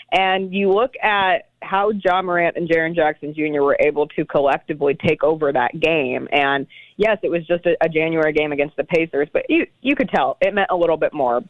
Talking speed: 220 wpm